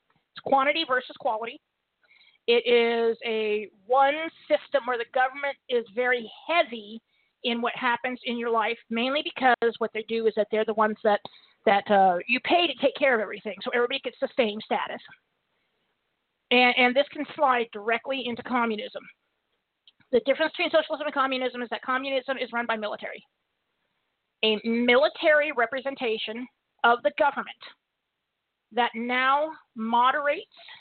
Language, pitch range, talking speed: English, 225-270 Hz, 150 wpm